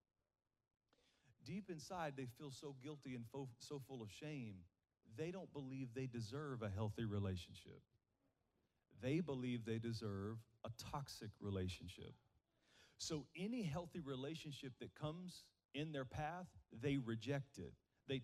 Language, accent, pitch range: English, American, 115-150 Hz